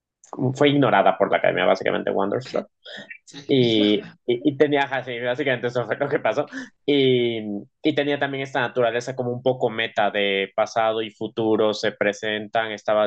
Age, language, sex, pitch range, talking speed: 20-39, Spanish, male, 105-125 Hz, 160 wpm